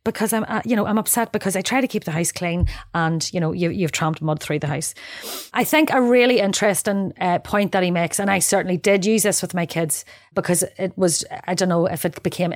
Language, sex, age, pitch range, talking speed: English, female, 30-49, 170-205 Hz, 245 wpm